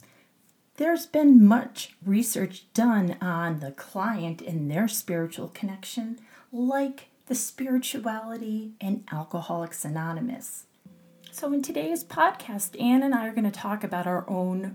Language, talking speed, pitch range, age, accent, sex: English, 130 wpm, 175-225 Hz, 30-49, American, female